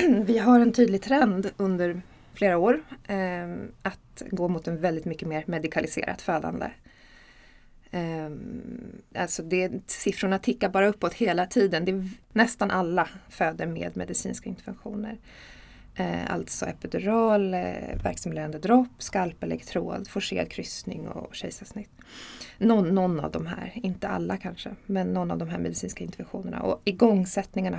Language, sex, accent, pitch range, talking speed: Swedish, female, native, 170-225 Hz, 135 wpm